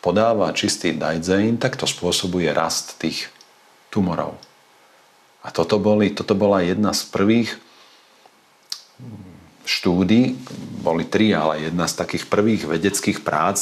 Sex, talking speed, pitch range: male, 120 wpm, 80-100 Hz